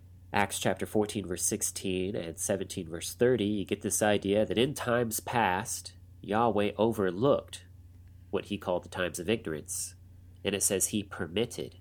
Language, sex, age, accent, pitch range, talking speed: English, male, 30-49, American, 90-105 Hz, 160 wpm